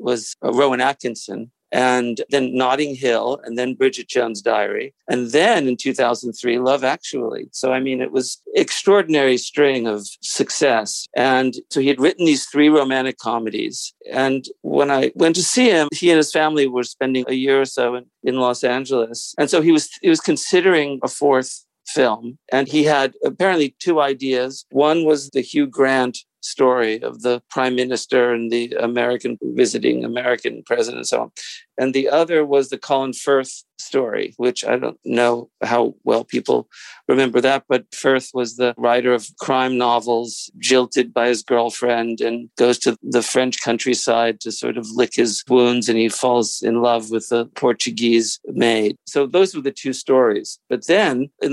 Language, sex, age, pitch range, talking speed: English, male, 50-69, 120-140 Hz, 180 wpm